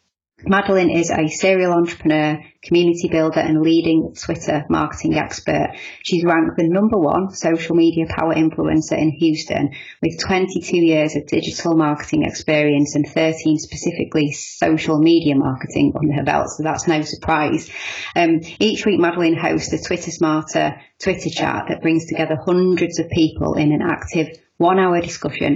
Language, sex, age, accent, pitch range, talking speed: English, female, 30-49, British, 150-170 Hz, 150 wpm